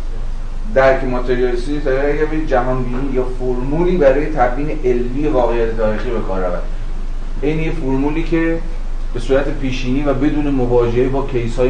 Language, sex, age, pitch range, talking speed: Persian, male, 30-49, 105-125 Hz, 150 wpm